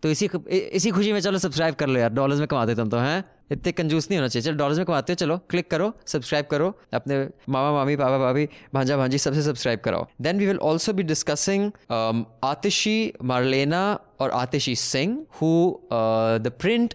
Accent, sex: Indian, male